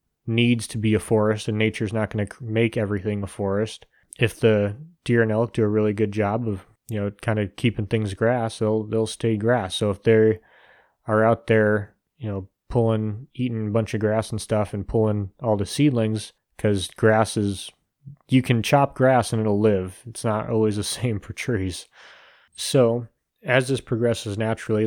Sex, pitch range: male, 105-120 Hz